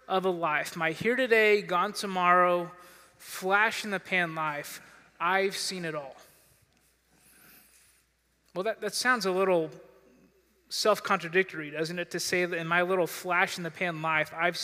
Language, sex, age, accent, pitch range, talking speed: English, male, 20-39, American, 160-190 Hz, 155 wpm